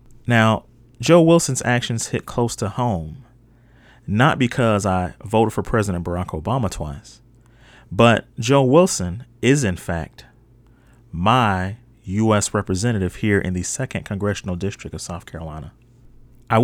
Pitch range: 95-120 Hz